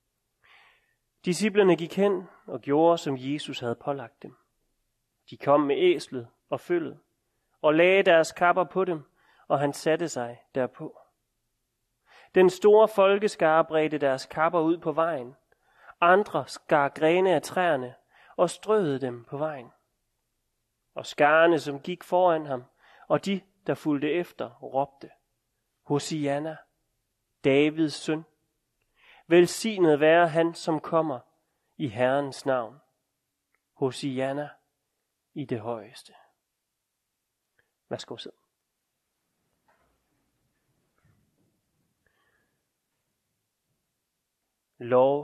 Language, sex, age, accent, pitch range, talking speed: Danish, male, 30-49, native, 135-170 Hz, 100 wpm